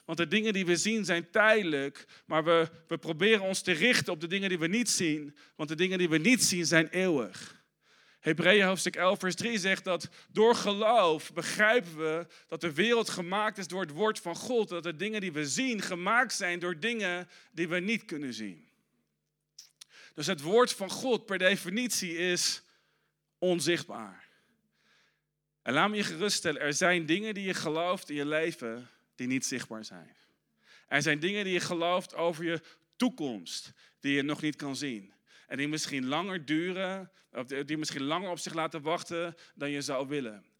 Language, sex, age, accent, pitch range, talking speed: Dutch, male, 40-59, Dutch, 150-190 Hz, 185 wpm